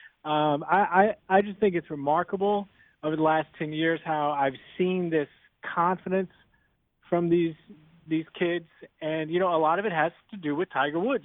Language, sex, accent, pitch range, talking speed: English, male, American, 155-185 Hz, 185 wpm